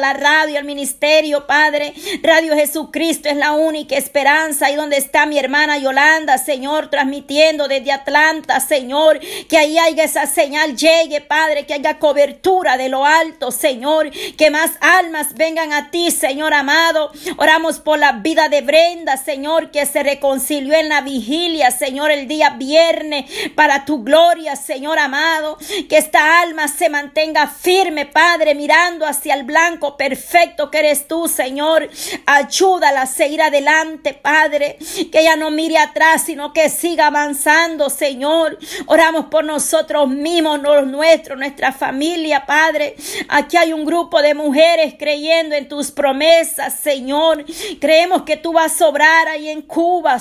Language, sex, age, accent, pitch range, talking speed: Spanish, female, 40-59, American, 290-320 Hz, 150 wpm